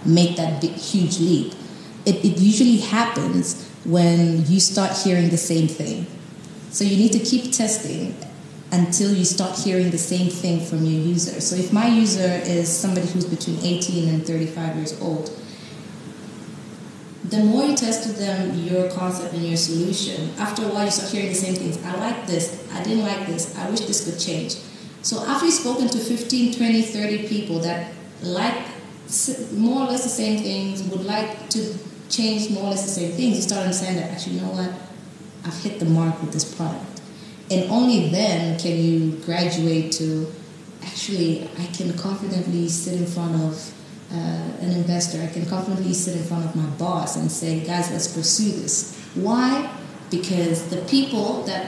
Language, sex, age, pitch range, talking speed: English, female, 20-39, 170-210 Hz, 180 wpm